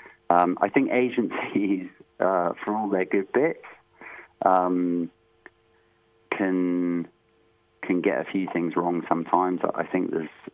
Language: English